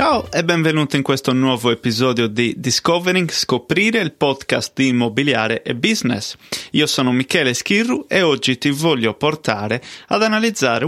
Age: 30-49